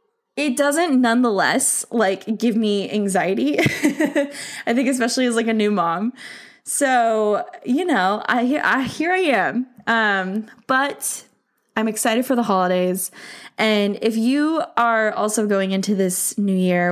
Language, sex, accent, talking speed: English, female, American, 140 wpm